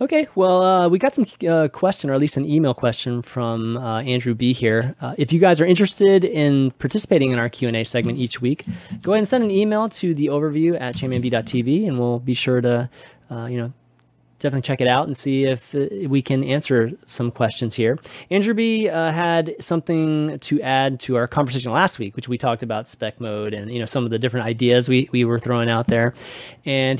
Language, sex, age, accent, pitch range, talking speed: English, male, 20-39, American, 120-155 Hz, 220 wpm